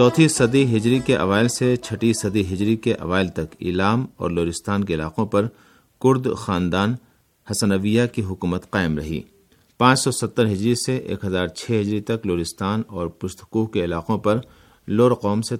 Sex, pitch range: male, 90-115 Hz